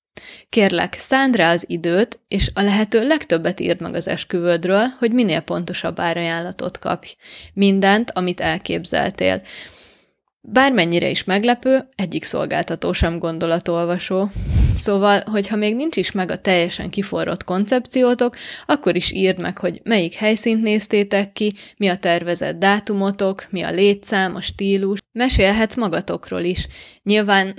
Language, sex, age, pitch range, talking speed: Hungarian, female, 20-39, 180-215 Hz, 130 wpm